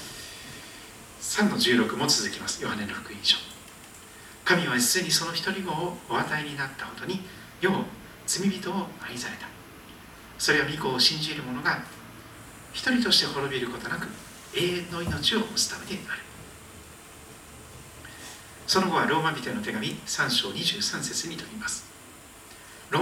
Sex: male